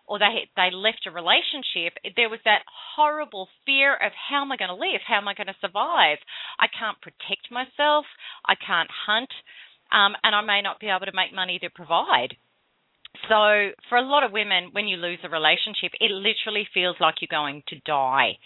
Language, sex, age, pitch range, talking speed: English, female, 30-49, 180-235 Hz, 200 wpm